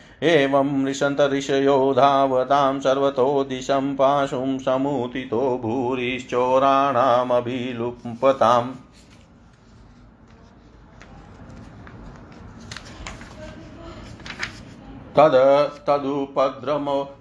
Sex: male